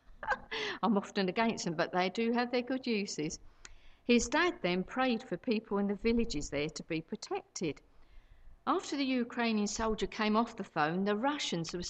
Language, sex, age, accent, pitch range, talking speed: English, female, 60-79, British, 195-265 Hz, 175 wpm